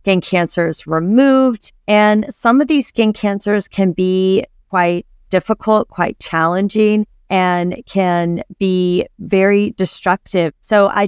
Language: English